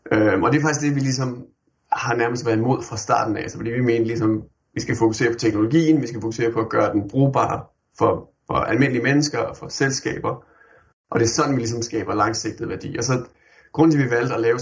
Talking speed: 225 wpm